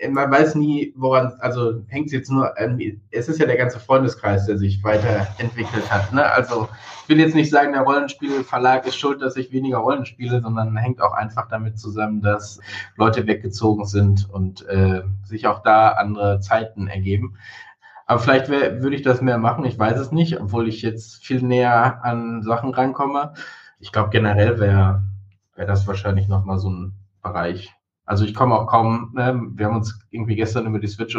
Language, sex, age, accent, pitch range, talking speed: German, male, 20-39, German, 100-125 Hz, 185 wpm